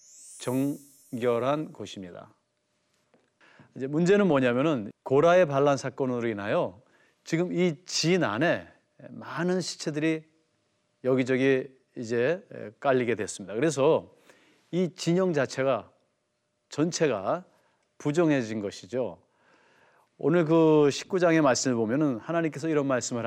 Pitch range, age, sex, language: 125-175 Hz, 40-59, male, Korean